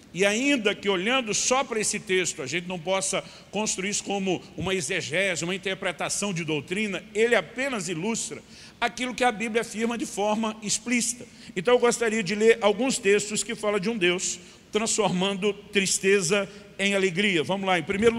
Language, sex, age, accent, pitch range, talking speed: Portuguese, male, 50-69, Brazilian, 175-210 Hz, 170 wpm